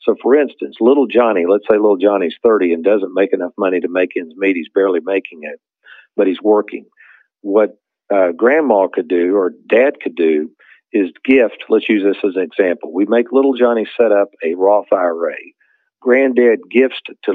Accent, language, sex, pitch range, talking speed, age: American, English, male, 90-115 Hz, 190 wpm, 50-69